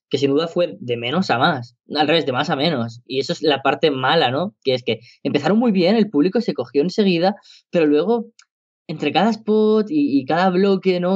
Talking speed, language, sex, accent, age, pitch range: 225 wpm, Spanish, female, Spanish, 10-29, 125-170 Hz